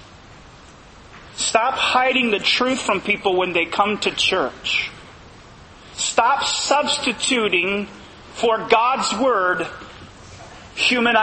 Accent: American